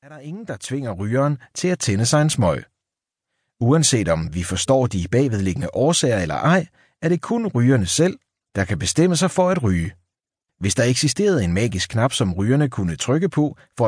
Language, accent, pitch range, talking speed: Danish, native, 100-160 Hz, 195 wpm